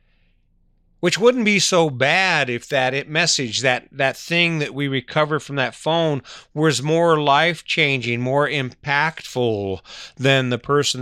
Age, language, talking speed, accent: 40-59, English, 135 wpm, American